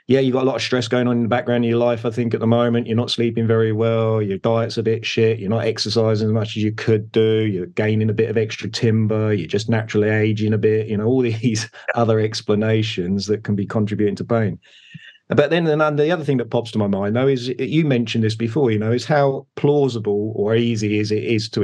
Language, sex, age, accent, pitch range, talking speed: English, male, 30-49, British, 110-130 Hz, 250 wpm